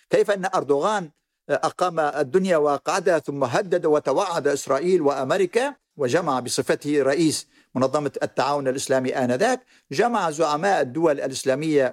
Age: 50-69